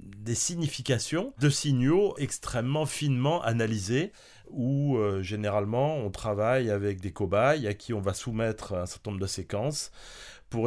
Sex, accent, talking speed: male, French, 145 wpm